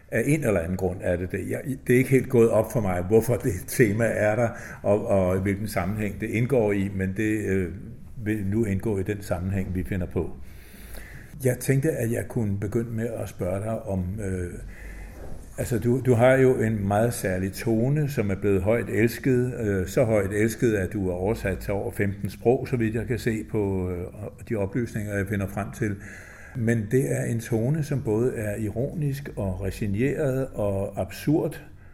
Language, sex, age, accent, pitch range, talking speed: Danish, male, 60-79, native, 95-115 Hz, 195 wpm